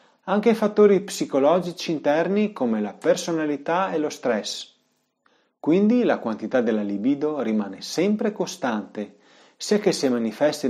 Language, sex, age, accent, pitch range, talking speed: Italian, male, 40-59, native, 120-200 Hz, 125 wpm